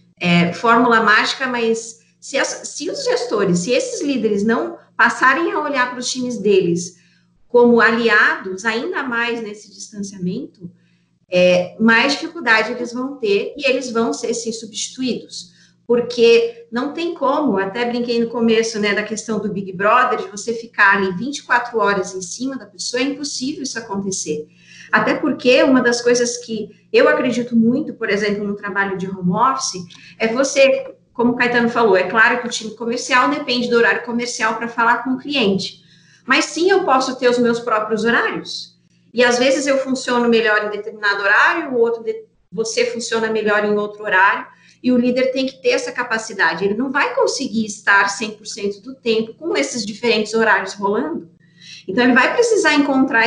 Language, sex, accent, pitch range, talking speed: Portuguese, female, Brazilian, 205-255 Hz, 175 wpm